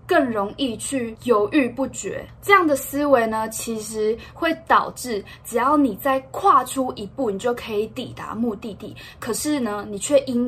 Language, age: Chinese, 10-29